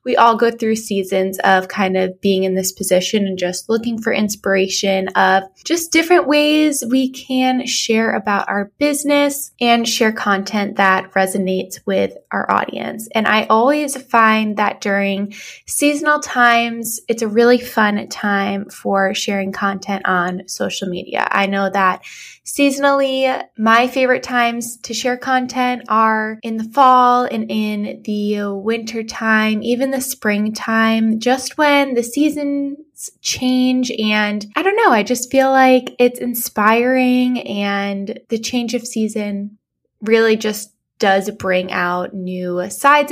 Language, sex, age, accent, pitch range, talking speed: English, female, 10-29, American, 195-250 Hz, 145 wpm